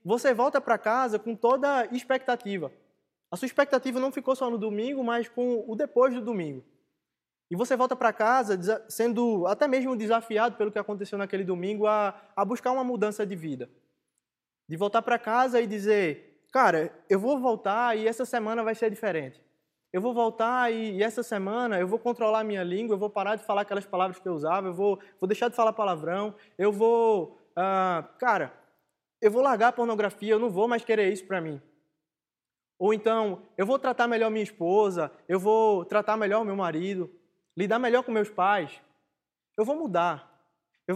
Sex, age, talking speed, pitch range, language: male, 20-39, 190 wpm, 185-235 Hz, Portuguese